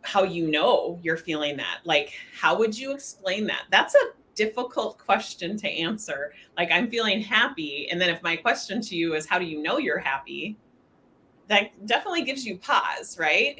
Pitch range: 160-205 Hz